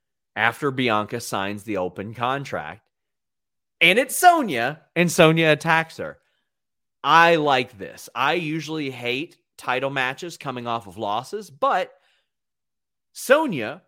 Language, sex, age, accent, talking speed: English, male, 30-49, American, 115 wpm